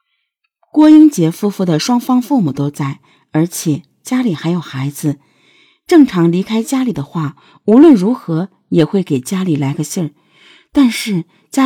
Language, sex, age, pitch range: Chinese, female, 50-69, 155-230 Hz